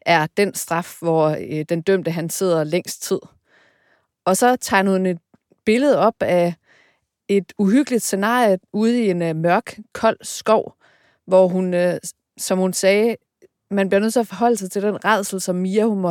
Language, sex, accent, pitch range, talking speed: Danish, female, native, 170-205 Hz, 170 wpm